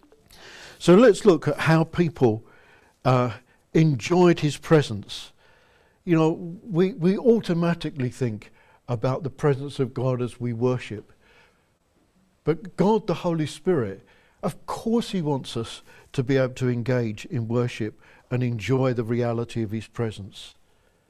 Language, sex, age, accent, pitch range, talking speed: English, male, 60-79, British, 125-165 Hz, 135 wpm